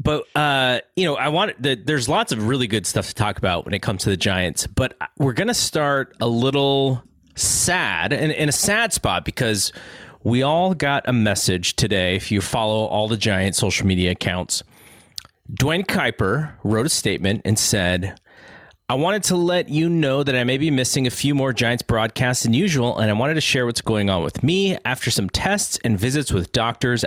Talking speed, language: 205 wpm, English